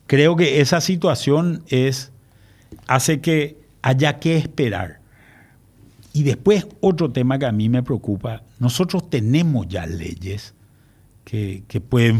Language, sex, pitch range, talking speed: Spanish, male, 120-155 Hz, 125 wpm